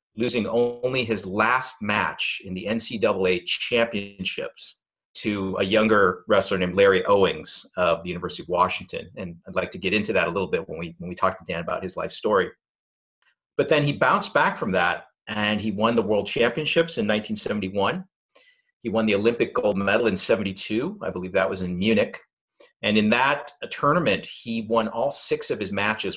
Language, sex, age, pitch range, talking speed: English, male, 40-59, 105-170 Hz, 190 wpm